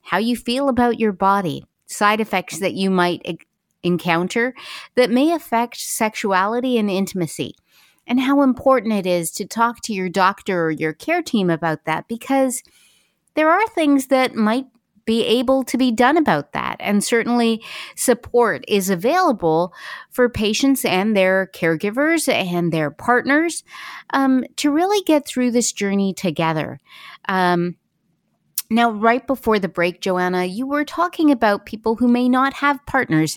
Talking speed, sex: 155 wpm, female